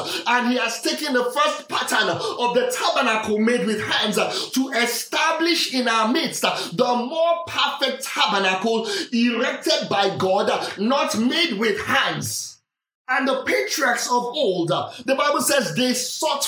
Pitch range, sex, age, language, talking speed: 210-275 Hz, male, 30-49, English, 140 wpm